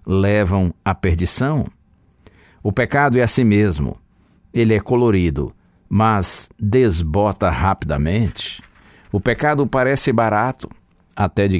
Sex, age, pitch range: male, 60-79, 90-130 Hz